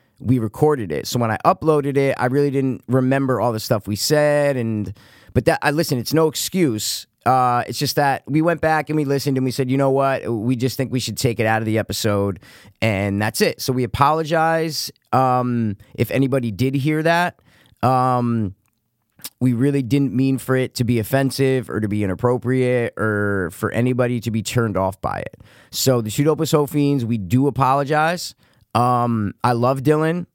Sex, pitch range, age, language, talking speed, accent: male, 115-135 Hz, 20-39, English, 190 wpm, American